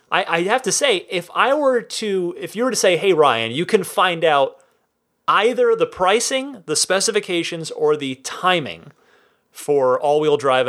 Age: 30-49